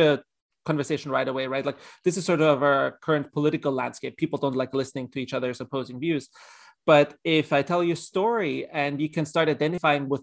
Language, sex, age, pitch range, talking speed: English, male, 30-49, 140-165 Hz, 210 wpm